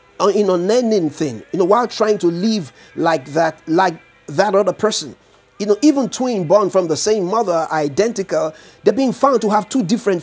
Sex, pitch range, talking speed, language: male, 155-200 Hz, 190 wpm, English